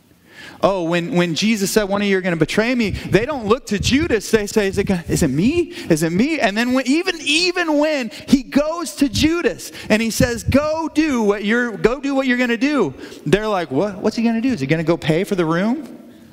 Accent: American